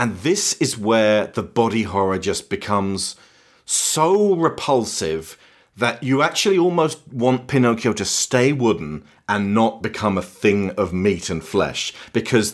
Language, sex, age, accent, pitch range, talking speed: English, male, 40-59, British, 110-140 Hz, 145 wpm